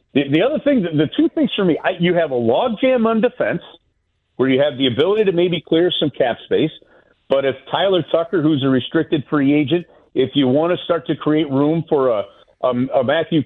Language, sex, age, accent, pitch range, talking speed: English, male, 50-69, American, 125-170 Hz, 215 wpm